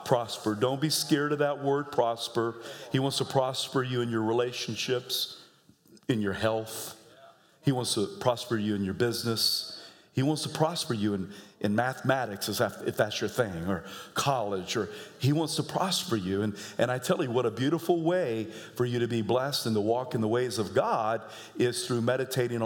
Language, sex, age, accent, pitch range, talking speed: English, male, 50-69, American, 120-195 Hz, 190 wpm